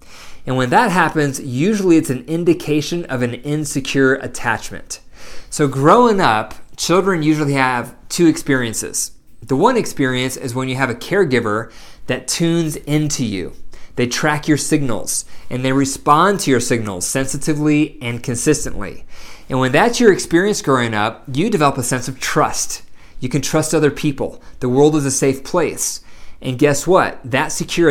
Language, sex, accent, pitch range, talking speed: English, male, American, 125-155 Hz, 160 wpm